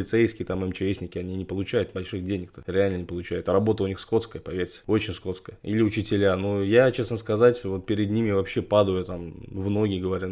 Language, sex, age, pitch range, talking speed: Russian, male, 20-39, 95-110 Hz, 205 wpm